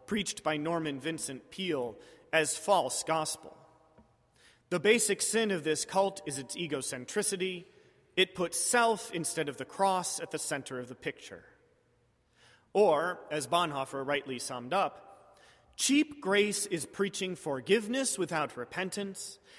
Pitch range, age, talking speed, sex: 155-225 Hz, 30-49, 130 wpm, male